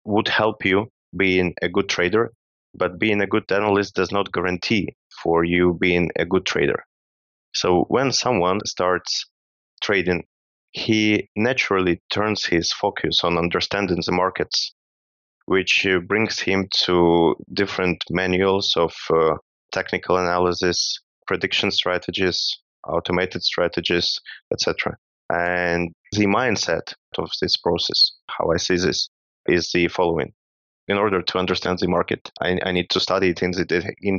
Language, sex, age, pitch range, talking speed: English, male, 20-39, 85-95 Hz, 135 wpm